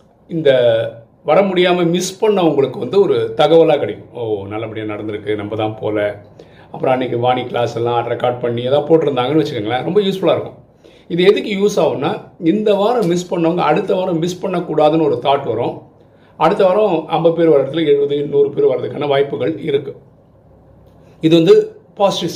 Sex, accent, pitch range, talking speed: male, native, 130-180 Hz, 155 wpm